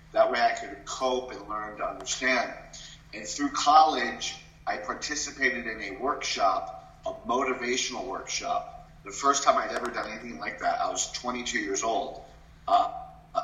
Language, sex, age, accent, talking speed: English, male, 40-59, American, 155 wpm